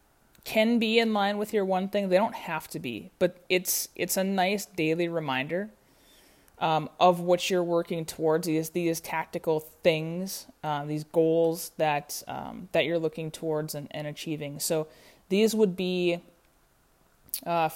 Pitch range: 160-185 Hz